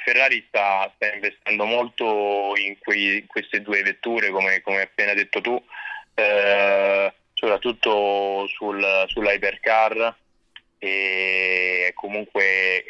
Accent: native